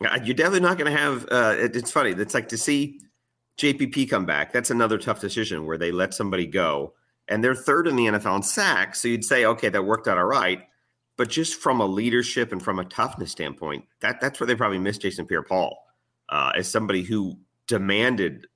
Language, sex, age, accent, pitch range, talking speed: English, male, 40-59, American, 90-120 Hz, 210 wpm